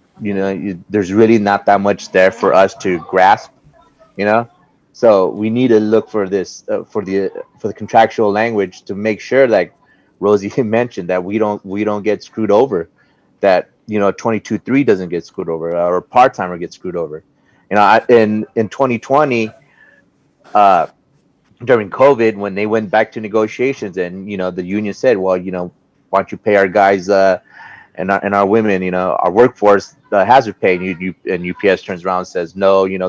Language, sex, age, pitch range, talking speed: English, male, 30-49, 95-110 Hz, 205 wpm